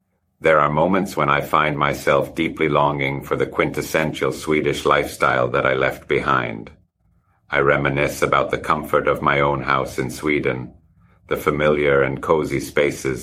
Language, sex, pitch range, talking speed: English, male, 75-90 Hz, 155 wpm